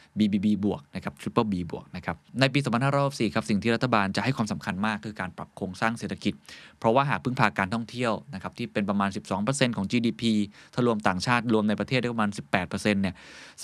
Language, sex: Thai, male